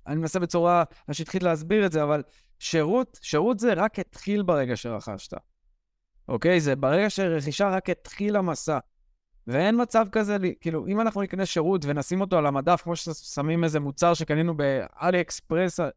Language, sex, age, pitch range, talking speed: Hebrew, male, 20-39, 140-185 Hz, 155 wpm